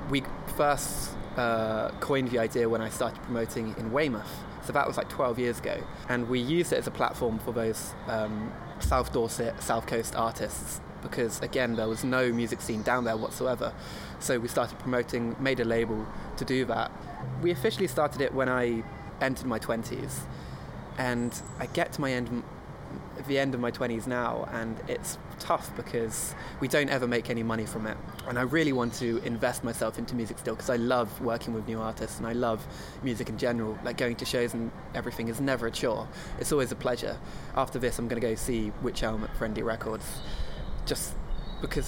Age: 20-39